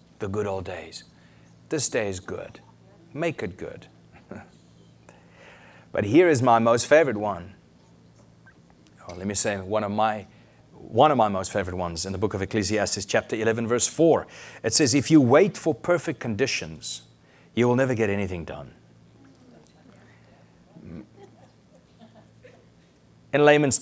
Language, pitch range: English, 90-130 Hz